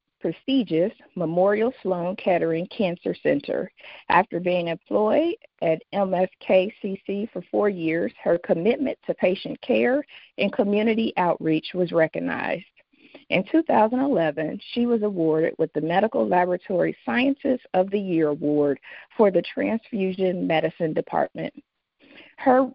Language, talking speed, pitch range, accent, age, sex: English, 115 wpm, 170-255 Hz, American, 50-69, female